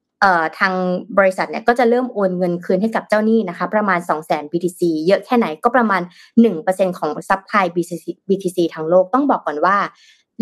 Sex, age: female, 20-39